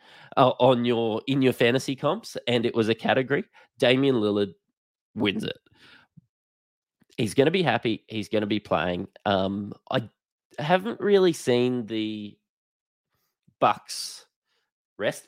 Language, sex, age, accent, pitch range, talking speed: English, male, 20-39, Australian, 105-125 Hz, 135 wpm